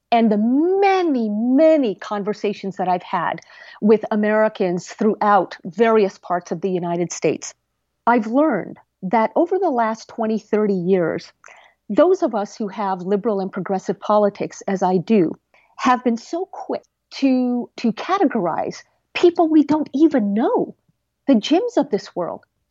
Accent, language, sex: American, English, female